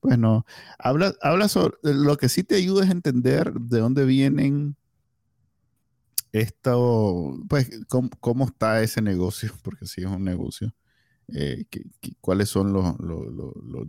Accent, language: Venezuelan, Spanish